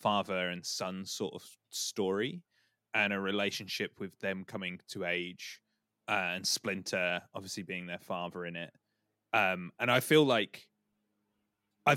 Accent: British